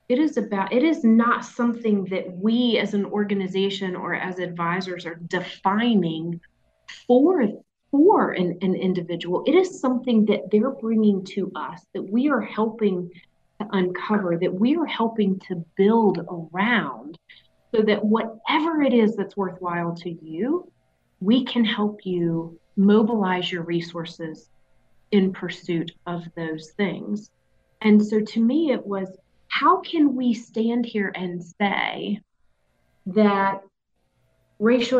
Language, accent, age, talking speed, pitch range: English, American, 30-49, 135 wpm, 180-220 Hz